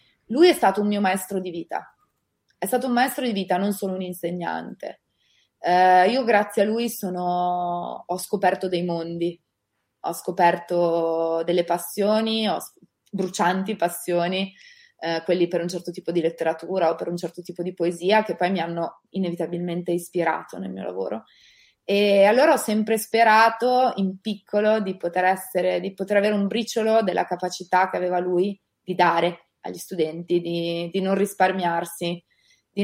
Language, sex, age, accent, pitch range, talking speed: Italian, female, 20-39, native, 170-200 Hz, 160 wpm